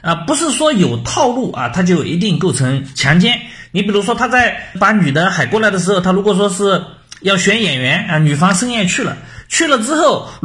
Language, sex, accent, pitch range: Chinese, male, native, 155-230 Hz